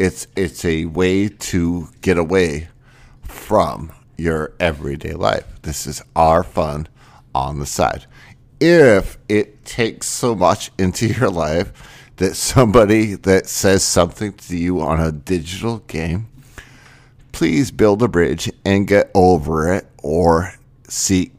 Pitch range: 85-115 Hz